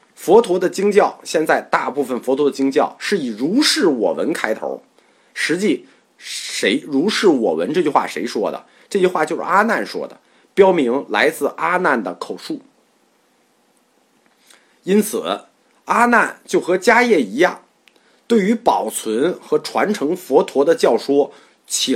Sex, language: male, Chinese